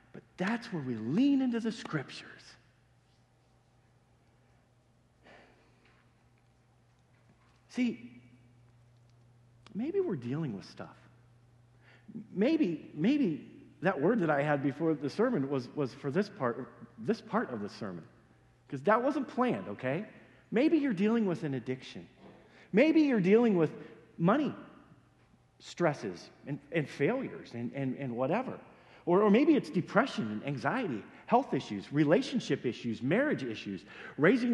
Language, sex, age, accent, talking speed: English, male, 50-69, American, 125 wpm